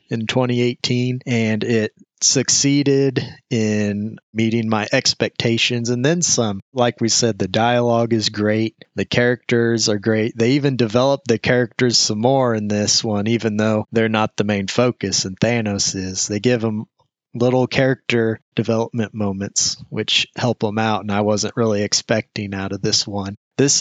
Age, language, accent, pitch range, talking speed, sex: 30-49, English, American, 105-125 Hz, 160 wpm, male